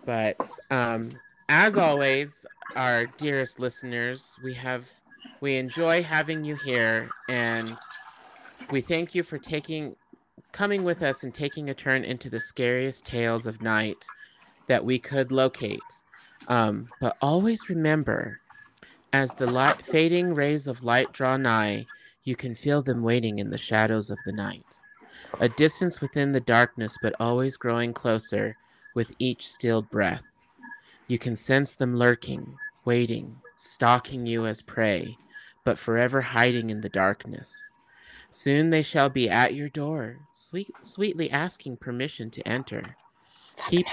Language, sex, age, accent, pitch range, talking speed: English, male, 30-49, American, 115-155 Hz, 140 wpm